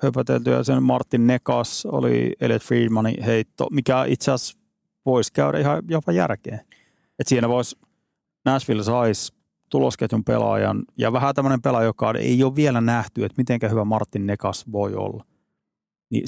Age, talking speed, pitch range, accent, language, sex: 30-49, 145 wpm, 105-125 Hz, native, Finnish, male